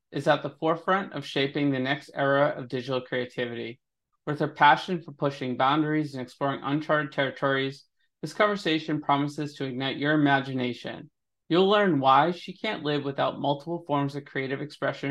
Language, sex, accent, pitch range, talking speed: English, male, American, 135-155 Hz, 165 wpm